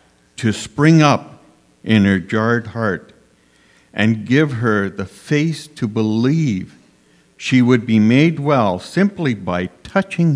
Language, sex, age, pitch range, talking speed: English, male, 60-79, 100-150 Hz, 125 wpm